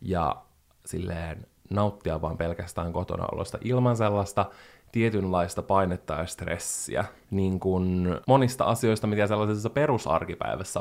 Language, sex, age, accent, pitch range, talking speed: Finnish, male, 20-39, native, 95-115 Hz, 100 wpm